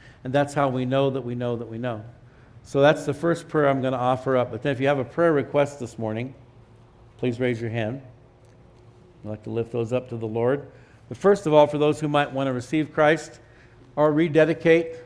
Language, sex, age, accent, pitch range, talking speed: English, male, 60-79, American, 120-145 Hz, 230 wpm